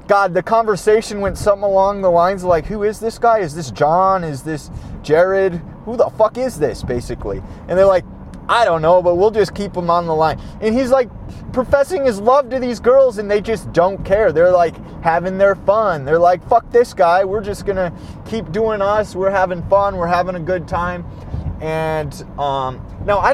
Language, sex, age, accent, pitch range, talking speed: English, male, 30-49, American, 170-225 Hz, 215 wpm